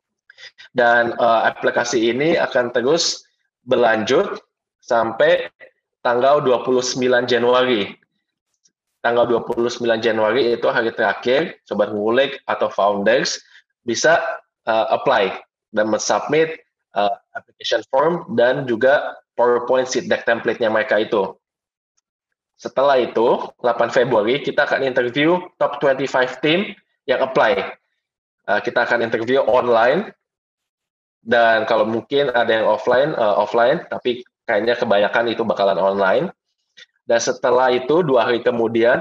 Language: Indonesian